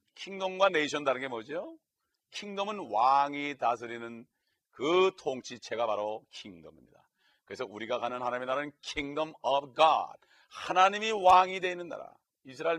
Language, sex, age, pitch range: Korean, male, 40-59, 135-180 Hz